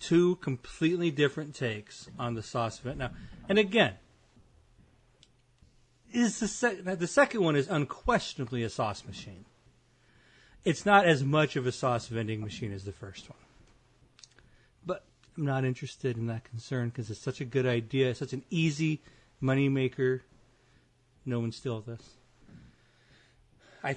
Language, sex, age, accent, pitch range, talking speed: English, male, 40-59, American, 115-140 Hz, 150 wpm